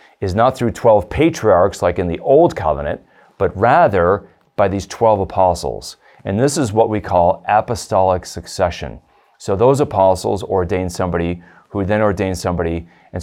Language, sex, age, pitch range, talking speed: English, male, 40-59, 85-105 Hz, 155 wpm